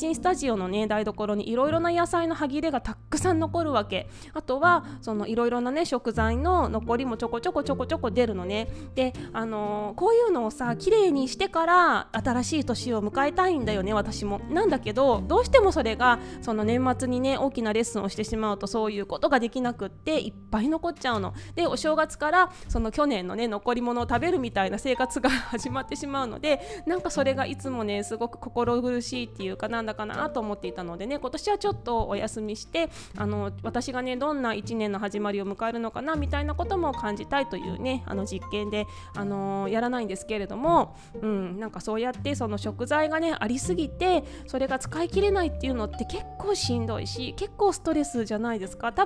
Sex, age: female, 20-39